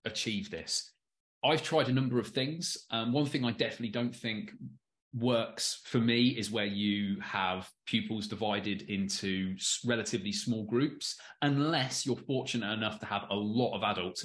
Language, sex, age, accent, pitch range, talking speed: English, male, 20-39, British, 105-130 Hz, 160 wpm